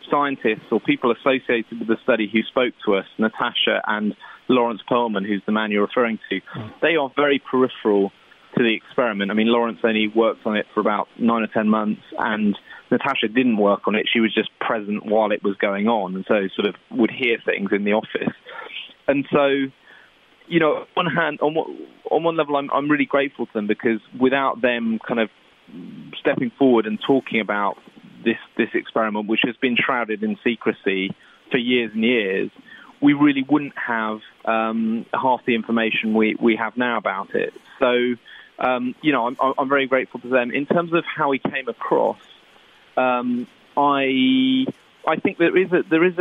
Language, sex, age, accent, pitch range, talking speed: English, male, 30-49, British, 110-135 Hz, 185 wpm